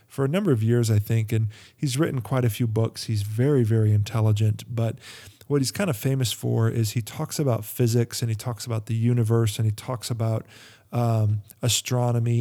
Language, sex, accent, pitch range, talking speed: English, male, American, 110-130 Hz, 205 wpm